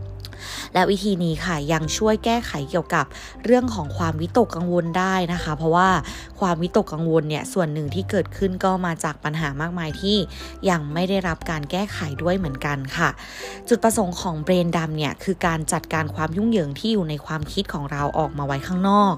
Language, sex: Thai, female